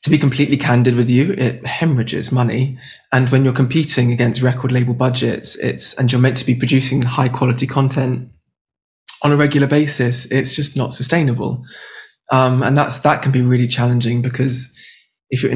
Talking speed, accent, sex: 175 wpm, British, male